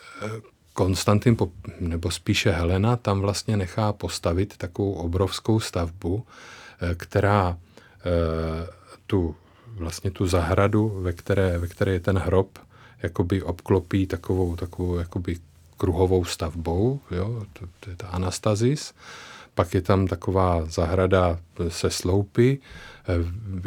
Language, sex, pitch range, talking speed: Czech, male, 85-100 Hz, 105 wpm